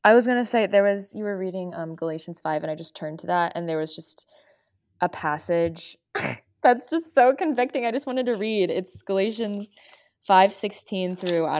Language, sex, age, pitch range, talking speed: English, female, 20-39, 160-205 Hz, 205 wpm